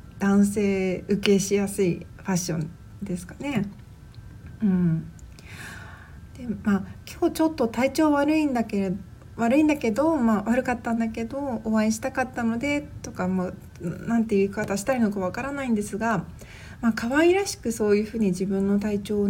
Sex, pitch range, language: female, 180-235 Hz, Japanese